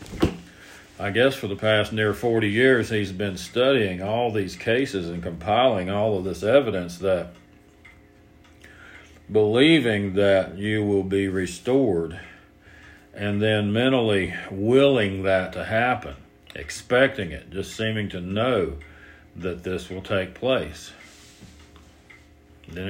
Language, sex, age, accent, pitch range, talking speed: English, male, 50-69, American, 90-105 Hz, 120 wpm